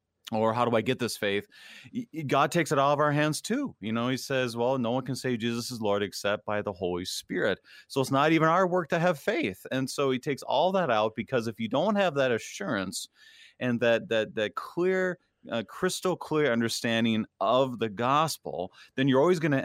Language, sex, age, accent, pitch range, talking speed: English, male, 30-49, American, 110-145 Hz, 220 wpm